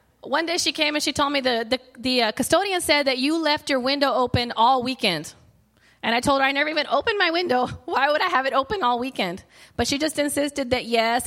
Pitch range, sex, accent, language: 225-270 Hz, female, American, English